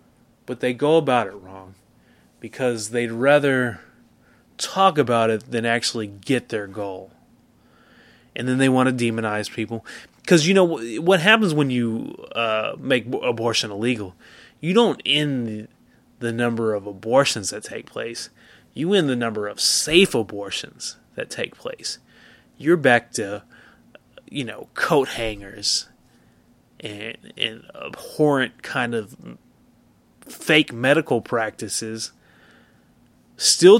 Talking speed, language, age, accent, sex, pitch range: 125 wpm, English, 30-49, American, male, 110-140 Hz